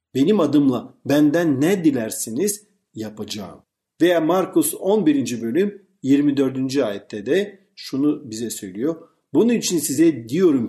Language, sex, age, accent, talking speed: Turkish, male, 50-69, native, 110 wpm